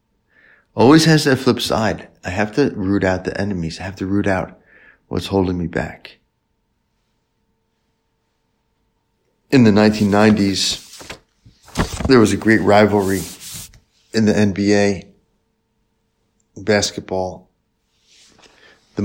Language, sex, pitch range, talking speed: English, male, 90-110 Hz, 105 wpm